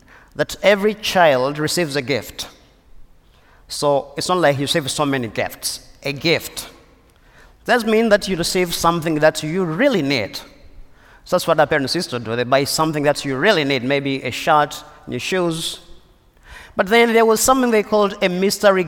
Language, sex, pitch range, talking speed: English, male, 150-205 Hz, 180 wpm